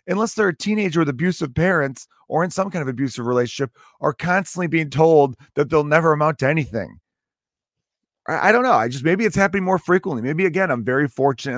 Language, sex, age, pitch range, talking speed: English, male, 30-49, 120-180 Hz, 205 wpm